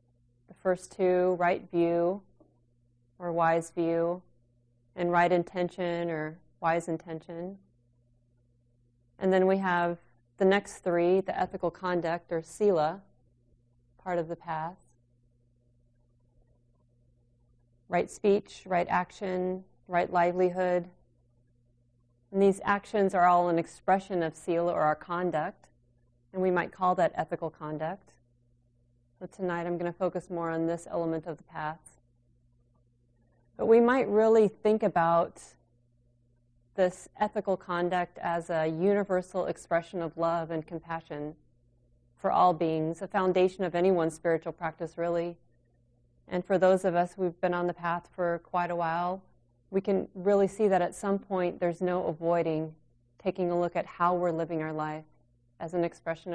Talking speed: 140 wpm